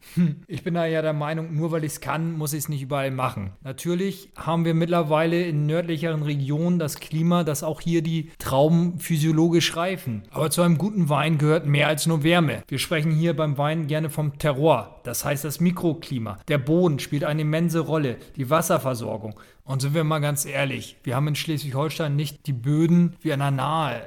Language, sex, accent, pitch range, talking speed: German, male, German, 140-165 Hz, 200 wpm